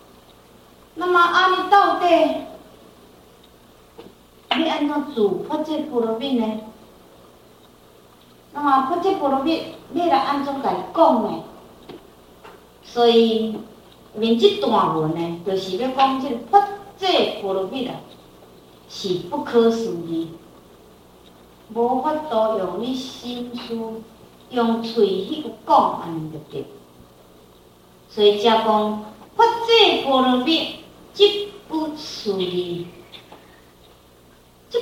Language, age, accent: Chinese, 40-59, American